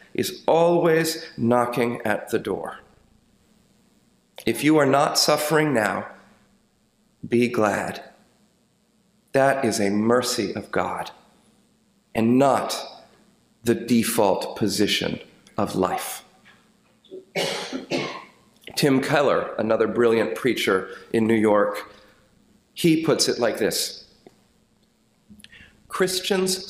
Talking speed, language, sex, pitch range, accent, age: 90 wpm, English, male, 110-150 Hz, American, 40-59